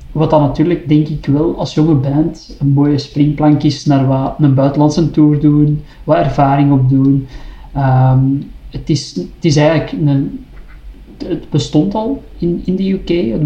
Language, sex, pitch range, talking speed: Dutch, male, 140-155 Hz, 165 wpm